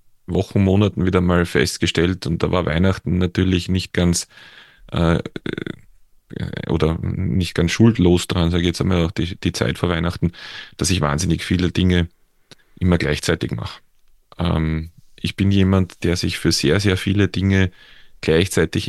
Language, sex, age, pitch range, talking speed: German, male, 30-49, 90-105 Hz, 145 wpm